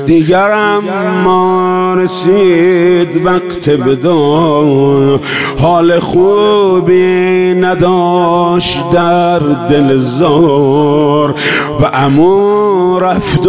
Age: 50-69